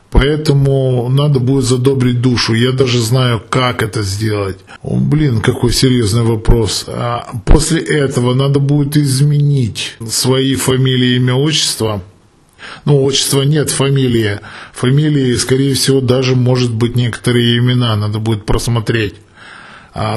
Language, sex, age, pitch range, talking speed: Russian, male, 20-39, 120-140 Hz, 115 wpm